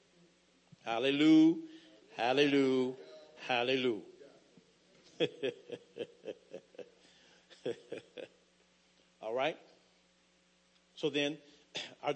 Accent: American